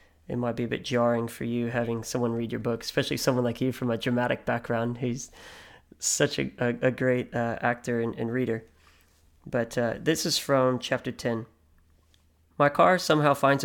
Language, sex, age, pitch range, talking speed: English, male, 20-39, 115-130 Hz, 190 wpm